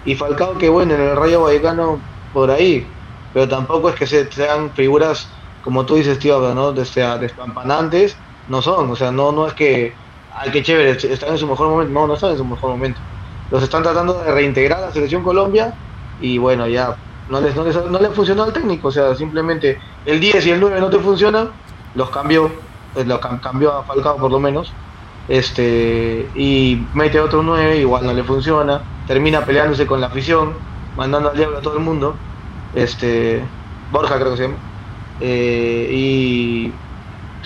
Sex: male